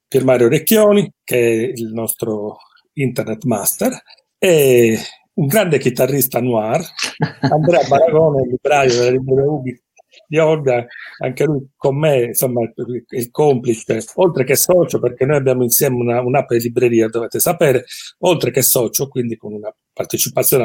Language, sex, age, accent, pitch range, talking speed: Italian, male, 40-59, native, 120-145 Hz, 140 wpm